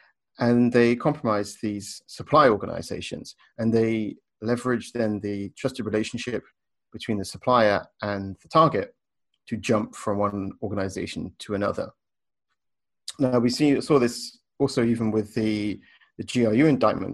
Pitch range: 100-120 Hz